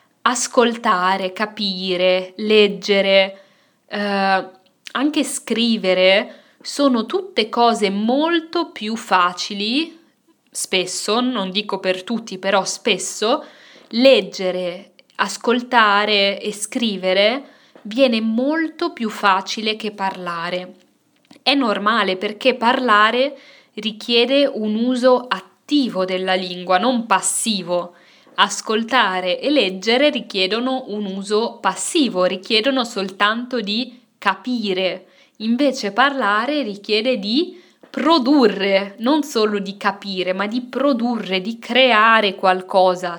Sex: female